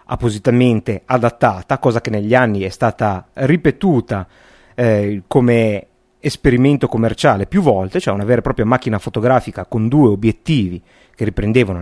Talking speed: 135 wpm